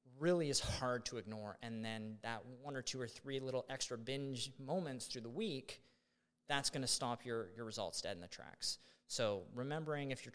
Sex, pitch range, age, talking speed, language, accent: male, 115-150 Hz, 30-49, 205 wpm, English, American